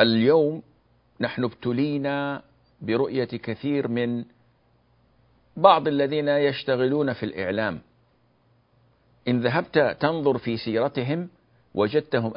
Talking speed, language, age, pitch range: 80 wpm, Arabic, 50-69, 100-130 Hz